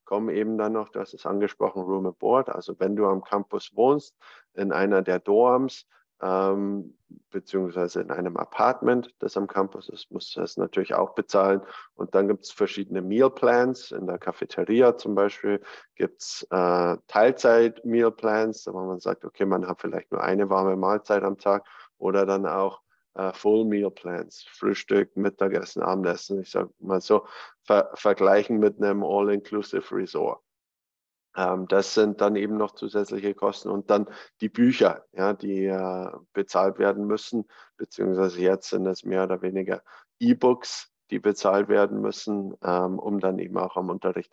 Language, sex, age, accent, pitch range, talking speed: German, male, 20-39, German, 95-105 Hz, 160 wpm